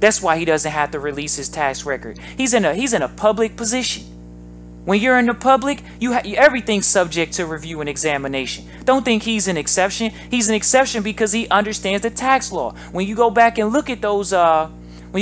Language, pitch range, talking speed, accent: English, 145-215 Hz, 215 wpm, American